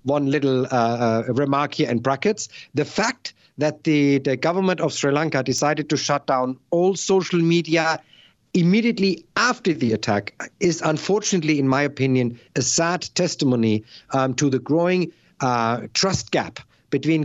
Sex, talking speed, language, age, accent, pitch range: male, 155 wpm, English, 50-69, German, 130-160 Hz